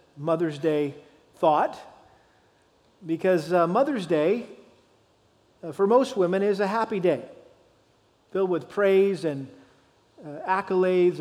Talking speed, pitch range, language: 95 wpm, 160-190 Hz, English